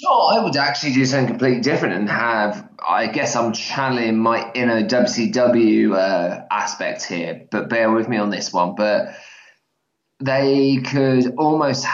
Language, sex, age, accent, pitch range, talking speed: English, male, 20-39, British, 105-120 Hz, 155 wpm